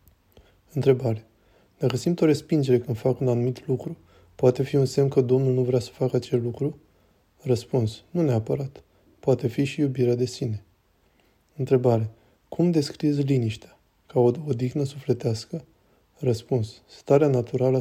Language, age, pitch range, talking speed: Romanian, 20-39, 115-135 Hz, 140 wpm